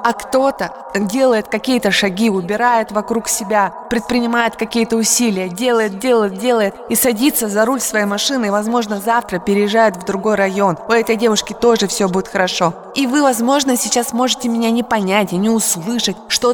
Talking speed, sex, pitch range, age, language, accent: 165 wpm, female, 185-240 Hz, 20-39, Russian, native